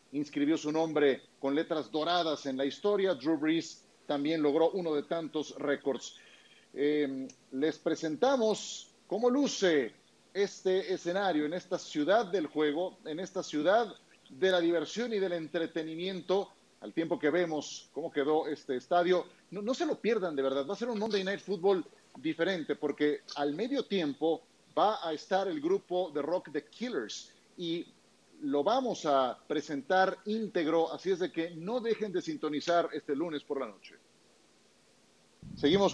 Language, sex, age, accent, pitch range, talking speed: Spanish, male, 40-59, Mexican, 155-195 Hz, 155 wpm